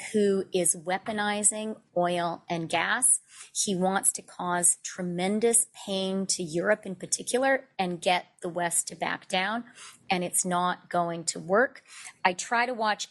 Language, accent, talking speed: English, American, 150 wpm